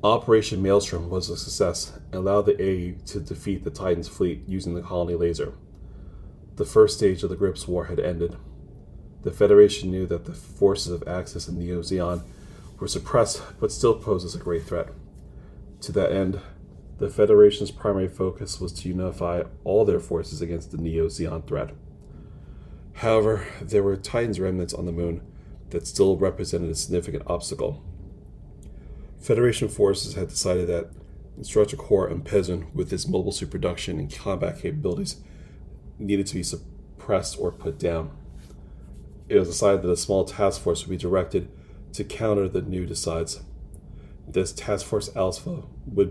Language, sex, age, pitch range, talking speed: English, male, 30-49, 85-100 Hz, 160 wpm